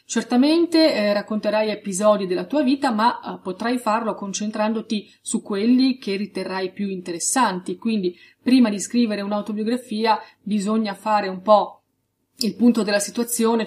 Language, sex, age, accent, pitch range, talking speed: Italian, female, 30-49, native, 195-225 Hz, 135 wpm